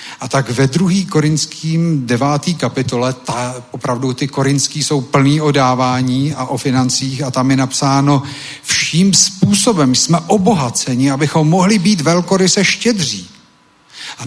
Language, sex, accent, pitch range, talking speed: Czech, male, native, 130-160 Hz, 140 wpm